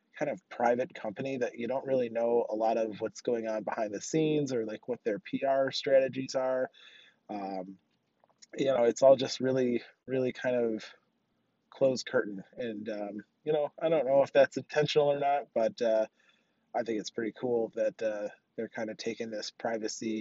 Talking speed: 190 wpm